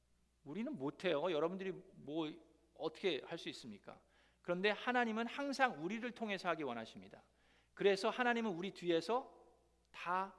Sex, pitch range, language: male, 150-215 Hz, Korean